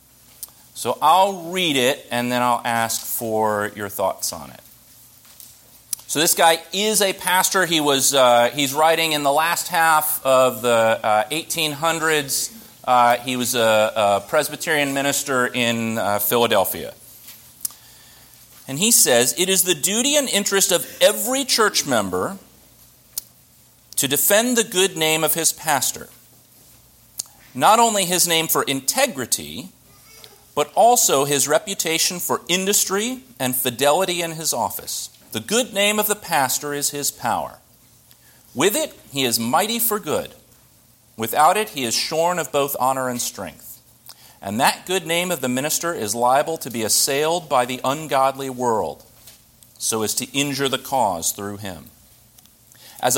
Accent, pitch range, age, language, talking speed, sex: American, 120-180 Hz, 40-59, English, 150 wpm, male